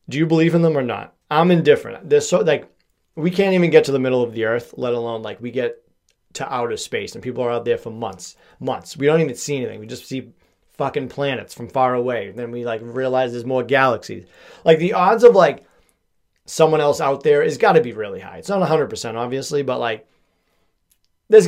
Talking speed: 225 wpm